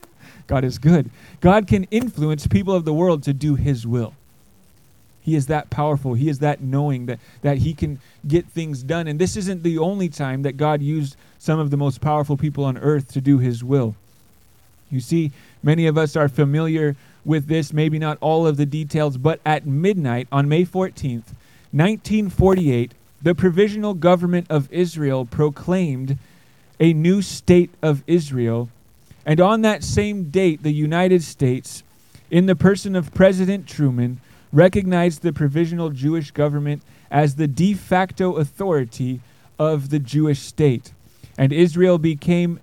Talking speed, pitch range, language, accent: 160 wpm, 135-170 Hz, English, American